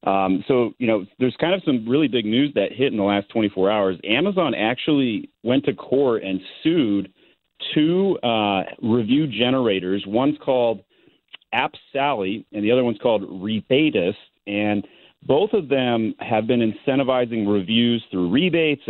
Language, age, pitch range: English, 40-59, 100-130 Hz